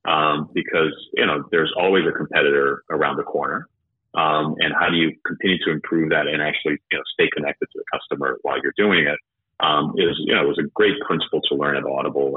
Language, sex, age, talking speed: English, male, 30-49, 225 wpm